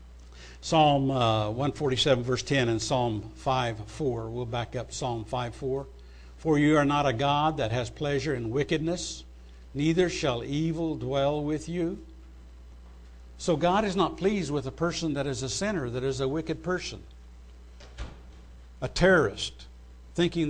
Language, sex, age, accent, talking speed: English, male, 60-79, American, 145 wpm